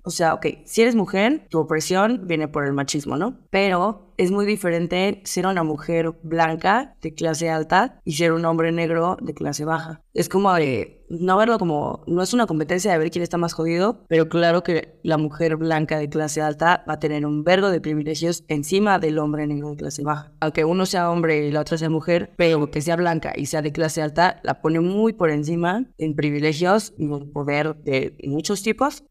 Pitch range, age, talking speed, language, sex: 155-175 Hz, 20-39, 210 wpm, Spanish, female